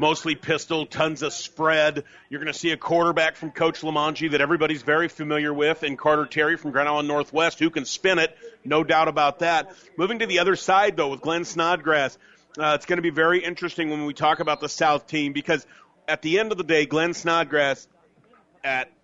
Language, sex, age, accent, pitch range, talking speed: English, male, 40-59, American, 150-175 Hz, 210 wpm